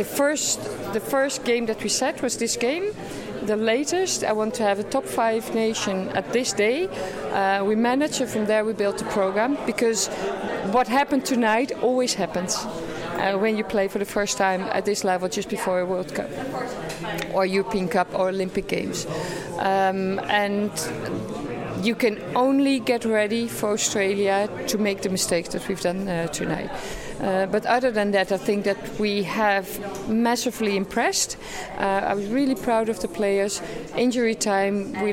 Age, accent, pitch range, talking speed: 50-69, Dutch, 200-245 Hz, 175 wpm